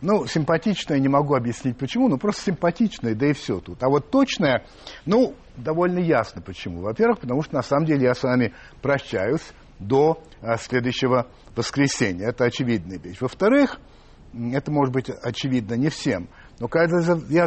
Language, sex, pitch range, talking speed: Russian, male, 130-180 Hz, 160 wpm